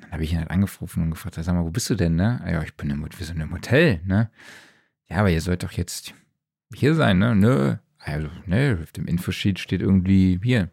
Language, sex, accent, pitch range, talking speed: German, male, German, 90-115 Hz, 215 wpm